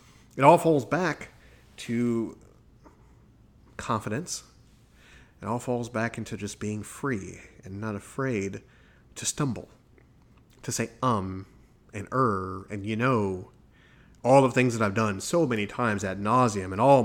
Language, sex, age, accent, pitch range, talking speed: English, male, 30-49, American, 100-125 Hz, 140 wpm